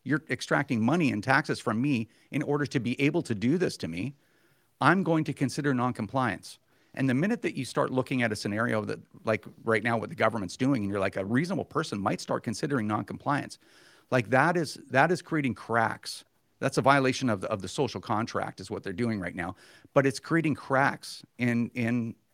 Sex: male